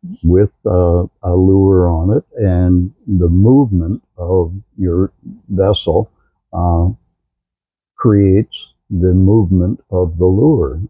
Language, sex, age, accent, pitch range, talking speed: English, male, 60-79, American, 85-100 Hz, 105 wpm